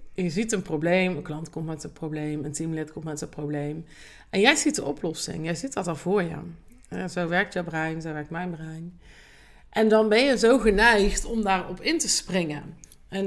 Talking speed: 215 wpm